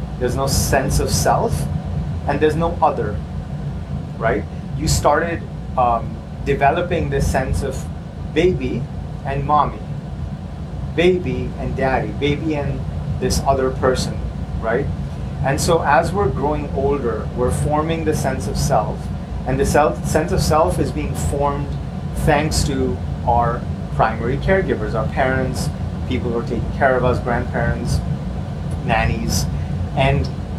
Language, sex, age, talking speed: English, male, 30-49, 130 wpm